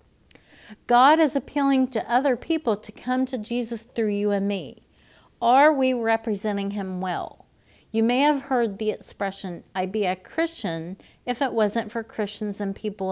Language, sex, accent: English, female, American